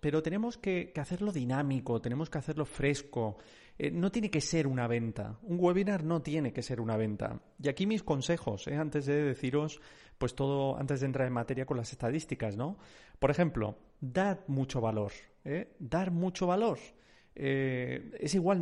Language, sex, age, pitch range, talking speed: Spanish, male, 40-59, 125-160 Hz, 175 wpm